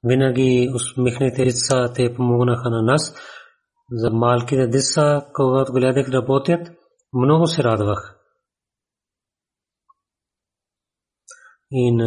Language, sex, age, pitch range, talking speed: Bulgarian, male, 30-49, 120-145 Hz, 90 wpm